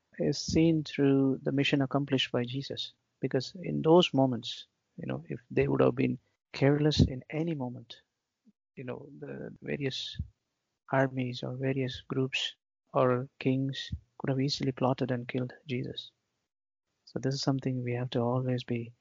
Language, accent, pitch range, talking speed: English, Indian, 120-135 Hz, 155 wpm